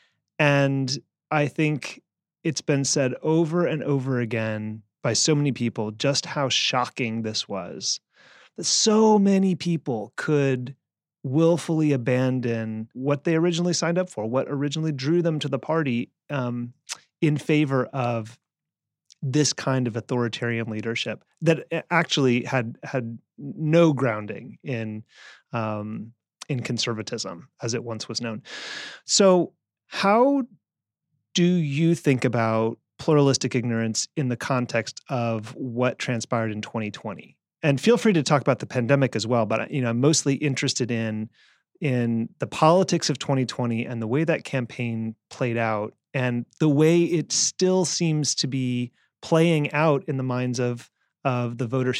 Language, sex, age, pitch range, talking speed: English, male, 30-49, 120-155 Hz, 140 wpm